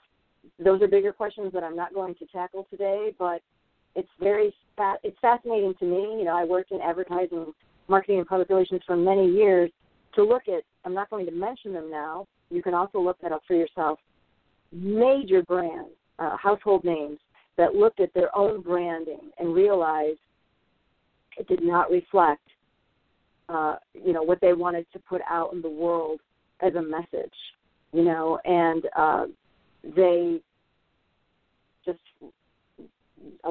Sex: female